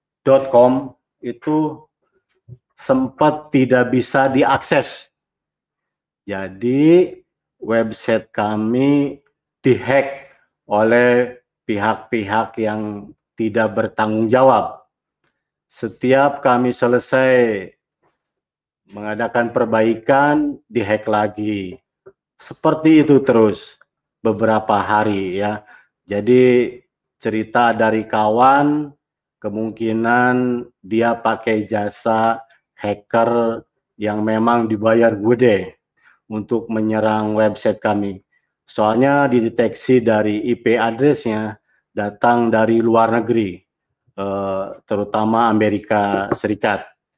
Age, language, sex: 40-59, Indonesian, male